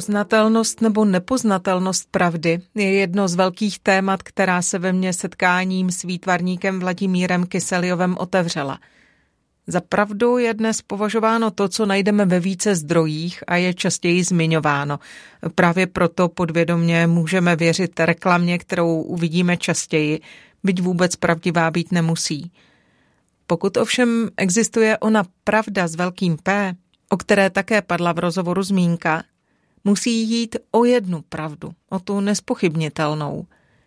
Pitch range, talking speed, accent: 175-205 Hz, 125 wpm, native